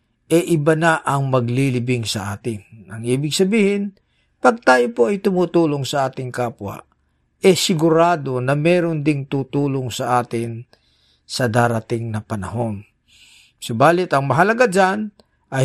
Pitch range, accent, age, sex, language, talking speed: 120-165 Hz, native, 50-69, male, Filipino, 135 wpm